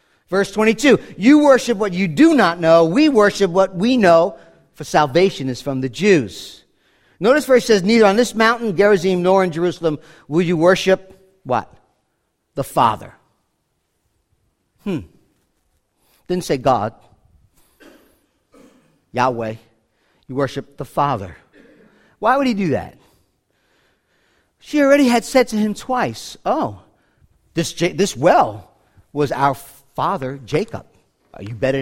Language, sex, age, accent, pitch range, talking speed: English, male, 50-69, American, 135-210 Hz, 130 wpm